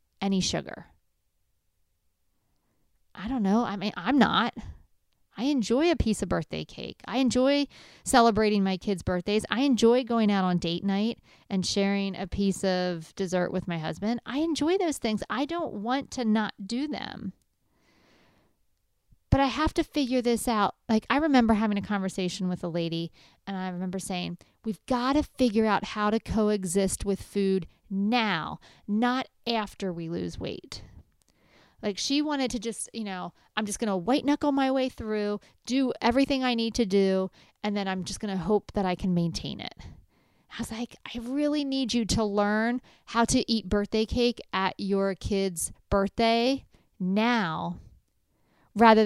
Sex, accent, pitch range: female, American, 185-240 Hz